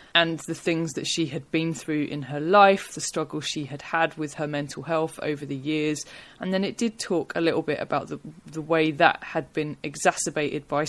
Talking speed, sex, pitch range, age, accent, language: 220 wpm, female, 145-170 Hz, 20-39, British, English